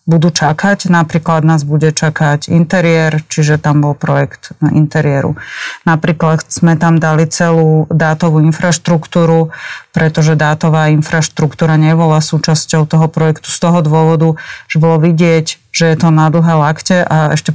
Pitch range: 155-175 Hz